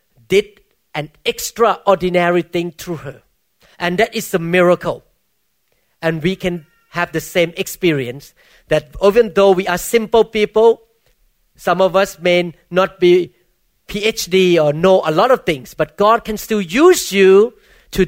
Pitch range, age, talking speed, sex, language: 170-220 Hz, 40-59, 150 wpm, male, English